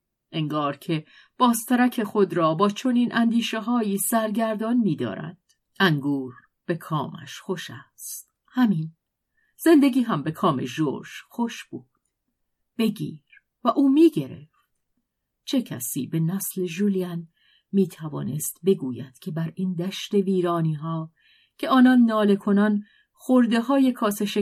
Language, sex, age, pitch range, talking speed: Persian, female, 50-69, 165-220 Hz, 115 wpm